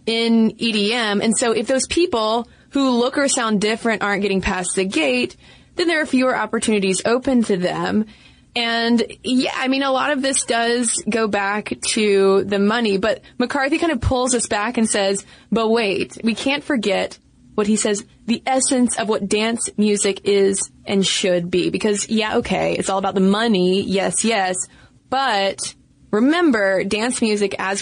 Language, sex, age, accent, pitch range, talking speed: English, female, 20-39, American, 195-235 Hz, 175 wpm